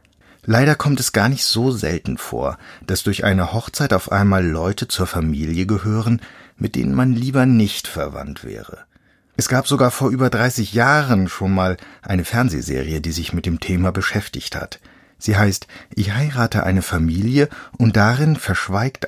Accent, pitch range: German, 90-120 Hz